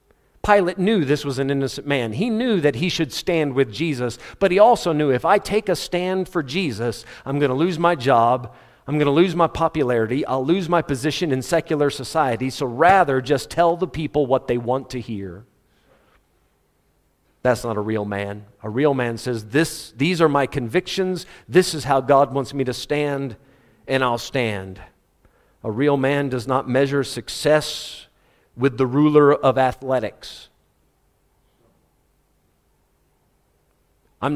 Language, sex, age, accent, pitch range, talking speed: English, male, 50-69, American, 120-160 Hz, 165 wpm